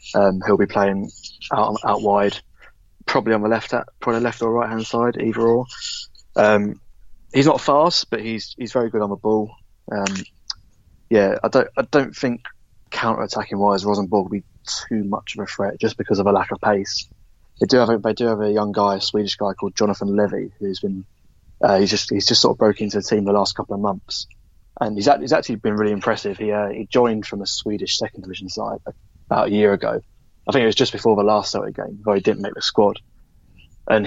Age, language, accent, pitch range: 20-39, English, British, 100-110 Hz